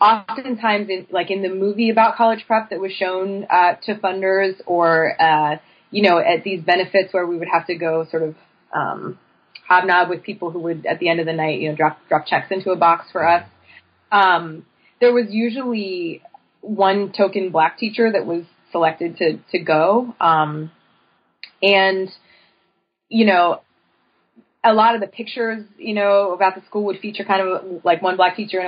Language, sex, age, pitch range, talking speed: English, female, 20-39, 170-210 Hz, 185 wpm